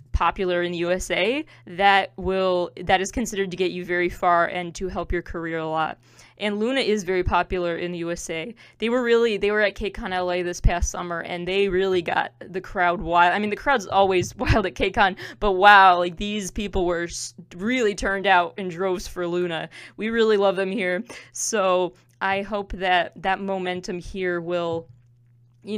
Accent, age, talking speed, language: American, 20-39, 190 wpm, English